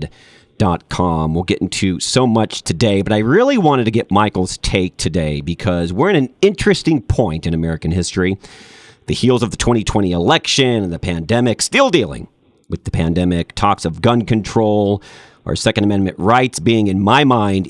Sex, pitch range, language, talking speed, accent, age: male, 90-130 Hz, English, 175 wpm, American, 40-59